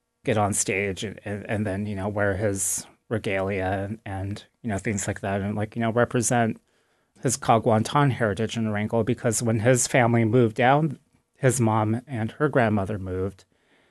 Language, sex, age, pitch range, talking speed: English, male, 30-49, 105-120 Hz, 175 wpm